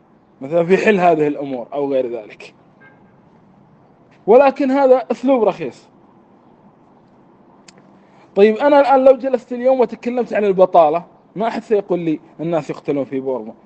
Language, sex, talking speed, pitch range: Arabic, male, 125 wpm, 165-235 Hz